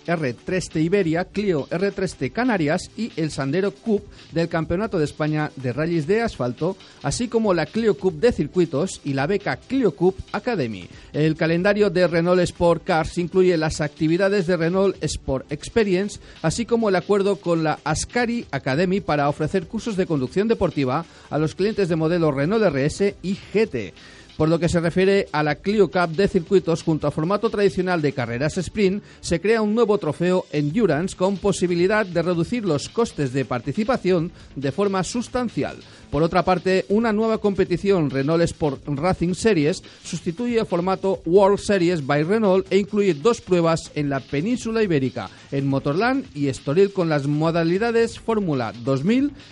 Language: Spanish